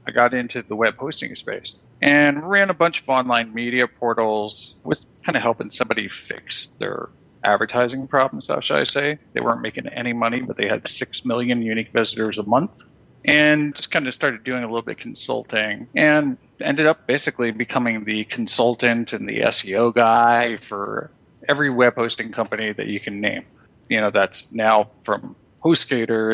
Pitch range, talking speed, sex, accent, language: 115-145 Hz, 180 wpm, male, American, English